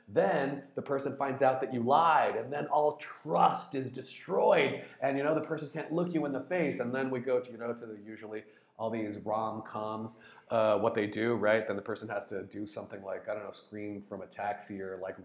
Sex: male